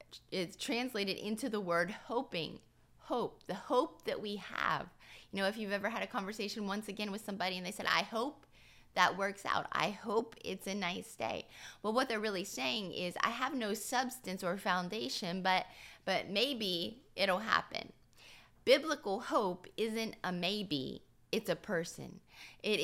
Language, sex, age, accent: English, female, 20-39, American